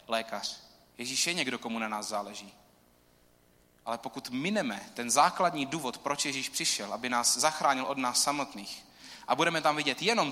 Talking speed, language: 165 wpm, Czech